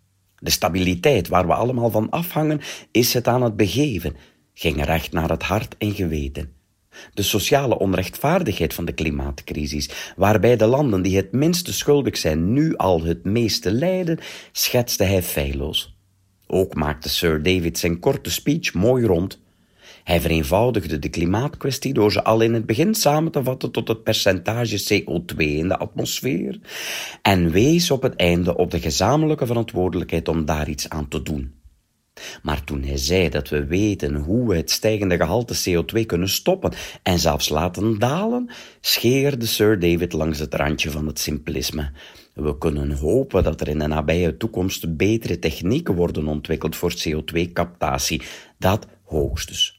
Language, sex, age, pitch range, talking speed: Dutch, male, 40-59, 80-110 Hz, 155 wpm